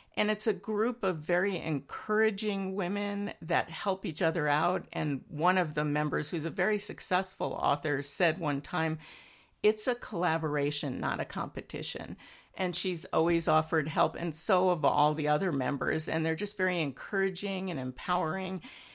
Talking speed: 160 wpm